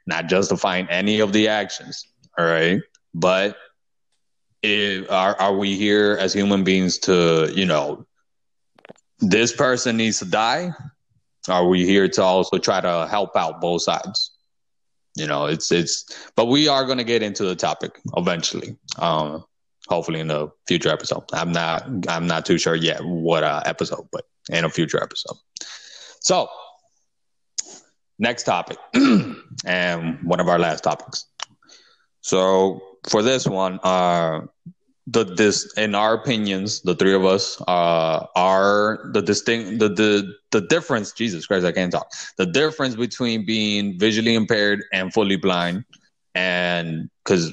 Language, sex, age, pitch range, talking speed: English, male, 20-39, 90-110 Hz, 150 wpm